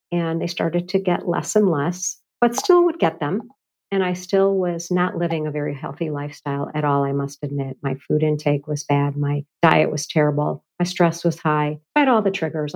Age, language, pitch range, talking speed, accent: 50-69, English, 155-185 Hz, 215 wpm, American